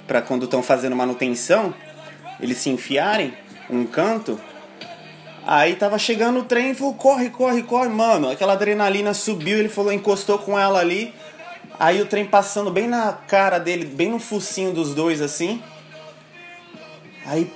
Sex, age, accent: male, 20-39, Brazilian